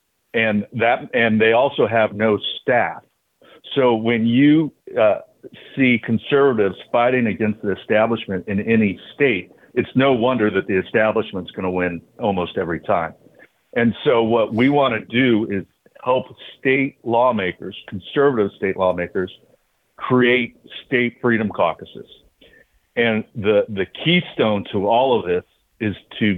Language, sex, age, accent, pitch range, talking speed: English, male, 50-69, American, 105-125 Hz, 140 wpm